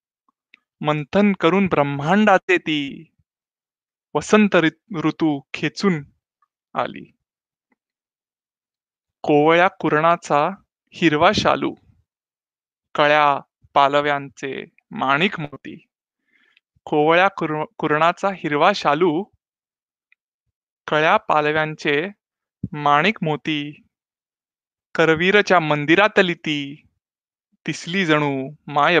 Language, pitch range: Marathi, 150-195 Hz